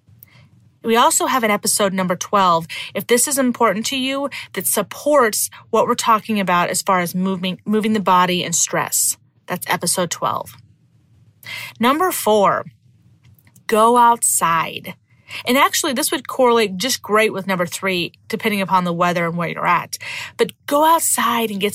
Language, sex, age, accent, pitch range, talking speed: English, female, 30-49, American, 185-240 Hz, 160 wpm